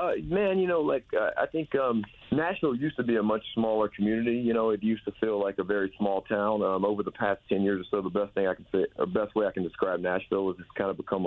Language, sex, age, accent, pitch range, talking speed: English, male, 40-59, American, 90-110 Hz, 290 wpm